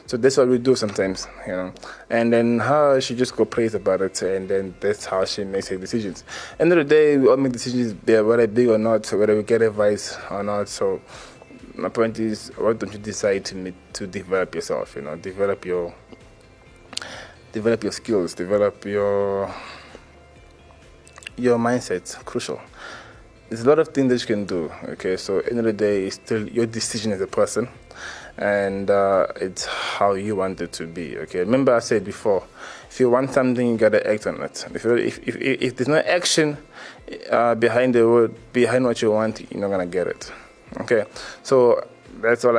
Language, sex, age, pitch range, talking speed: English, male, 20-39, 100-120 Hz, 195 wpm